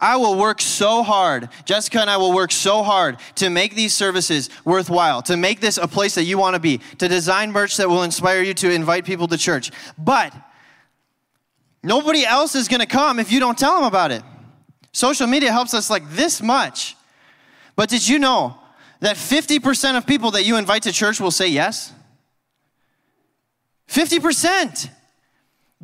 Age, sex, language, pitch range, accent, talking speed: 20-39, male, English, 155-220 Hz, American, 180 wpm